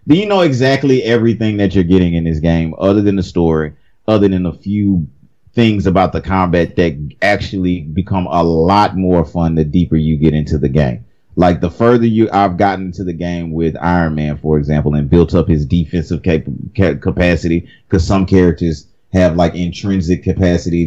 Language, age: English, 30-49